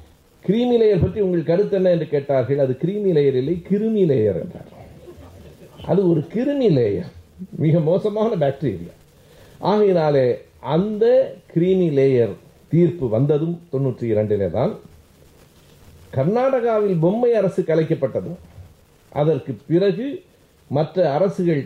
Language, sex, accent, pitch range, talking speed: Tamil, male, native, 125-185 Hz, 105 wpm